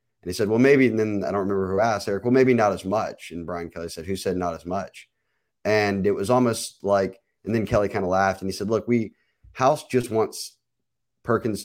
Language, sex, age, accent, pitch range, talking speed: English, male, 30-49, American, 90-115 Hz, 235 wpm